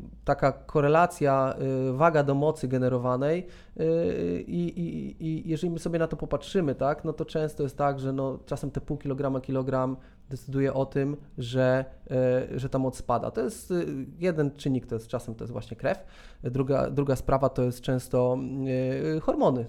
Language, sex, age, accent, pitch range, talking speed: Polish, male, 20-39, native, 130-150 Hz, 165 wpm